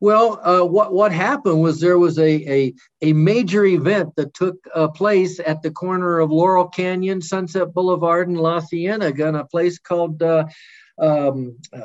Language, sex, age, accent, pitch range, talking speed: English, male, 50-69, American, 155-195 Hz, 170 wpm